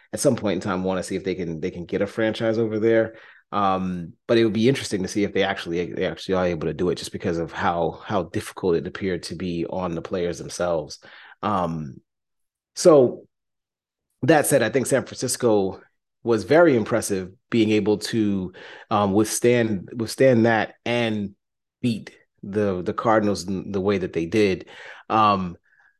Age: 30-49